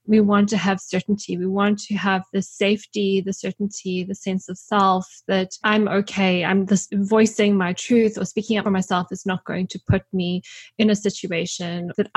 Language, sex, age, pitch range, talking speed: English, female, 20-39, 185-215 Hz, 190 wpm